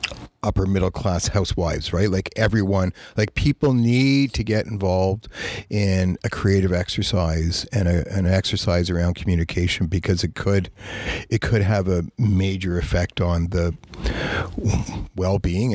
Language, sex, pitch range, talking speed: English, male, 90-110 Hz, 135 wpm